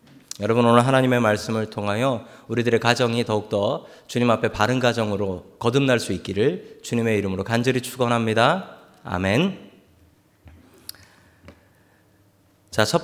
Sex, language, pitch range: male, Korean, 100-150 Hz